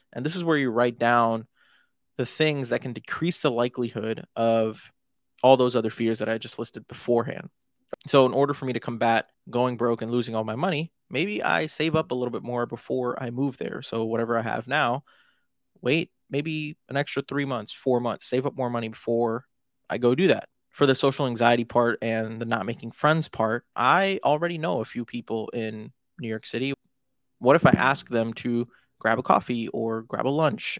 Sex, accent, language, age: male, American, English, 20-39